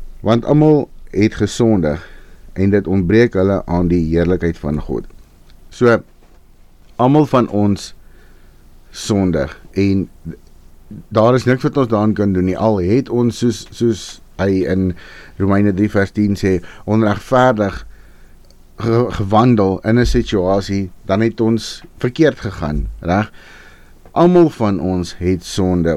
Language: English